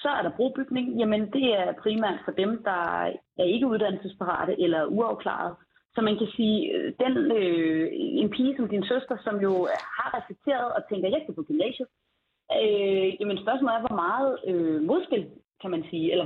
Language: Danish